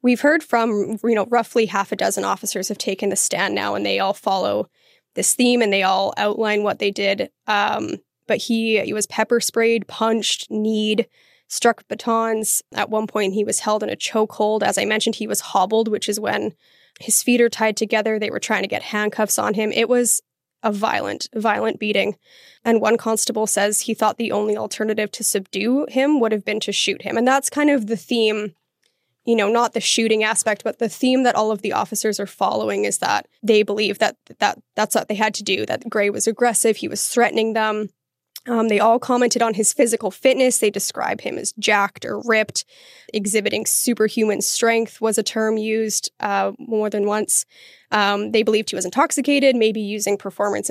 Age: 10-29